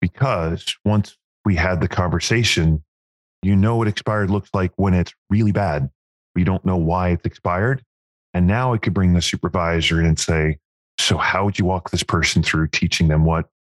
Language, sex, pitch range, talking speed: English, male, 85-110 Hz, 185 wpm